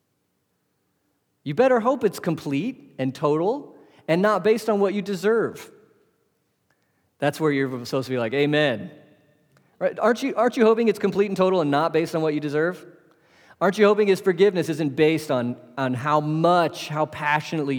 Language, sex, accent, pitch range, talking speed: English, male, American, 130-175 Hz, 170 wpm